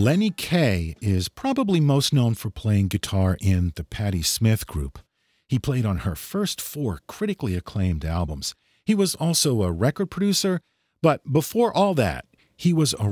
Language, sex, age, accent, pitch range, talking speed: English, male, 50-69, American, 95-150 Hz, 165 wpm